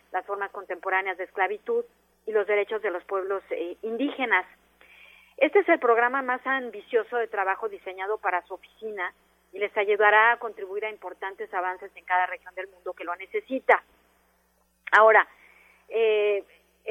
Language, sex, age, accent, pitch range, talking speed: Spanish, female, 40-59, Mexican, 190-250 Hz, 150 wpm